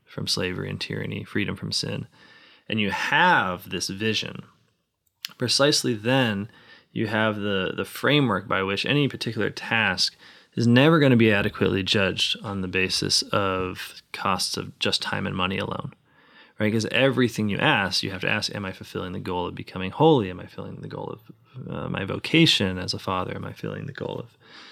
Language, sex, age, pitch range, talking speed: English, male, 20-39, 95-120 Hz, 185 wpm